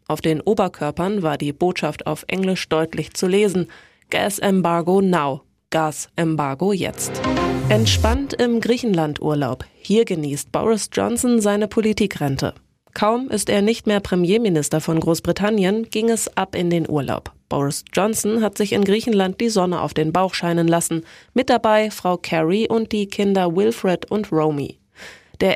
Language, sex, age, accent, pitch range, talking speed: German, female, 20-39, German, 160-205 Hz, 150 wpm